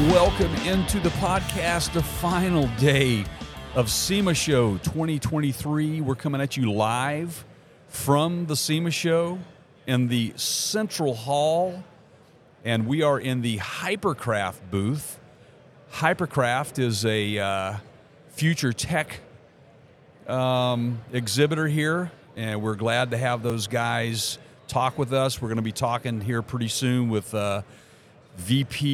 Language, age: English, 50-69